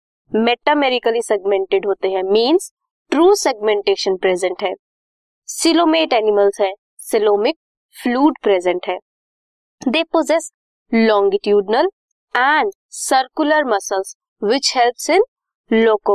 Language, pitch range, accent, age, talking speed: Hindi, 200-300 Hz, native, 20-39, 45 wpm